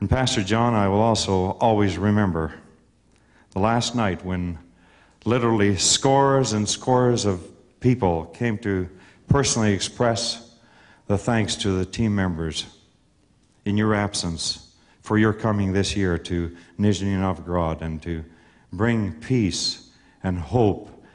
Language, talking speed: English, 125 wpm